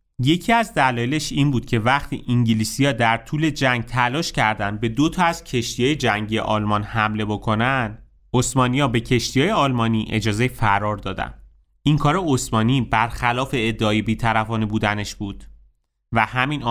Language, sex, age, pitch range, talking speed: Persian, male, 30-49, 110-135 Hz, 140 wpm